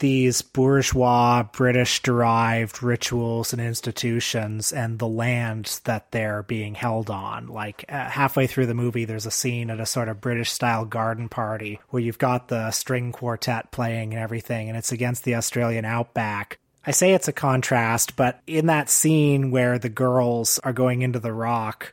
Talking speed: 175 wpm